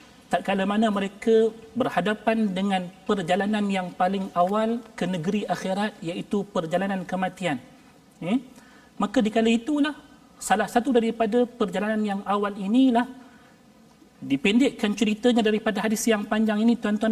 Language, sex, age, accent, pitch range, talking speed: Malayalam, male, 40-59, Indonesian, 190-245 Hz, 120 wpm